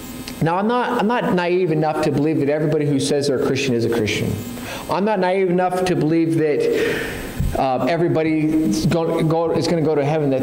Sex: male